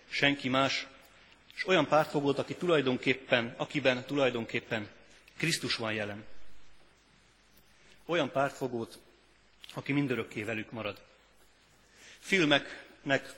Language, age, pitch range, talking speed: Hungarian, 30-49, 120-140 Hz, 85 wpm